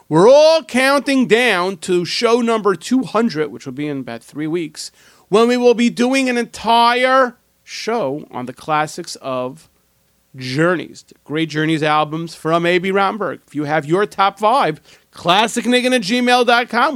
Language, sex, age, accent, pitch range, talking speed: English, male, 40-59, American, 150-220 Hz, 155 wpm